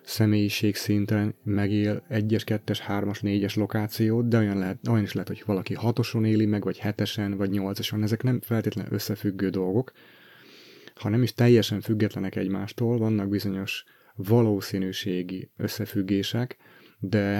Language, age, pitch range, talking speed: Hungarian, 30-49, 95-115 Hz, 135 wpm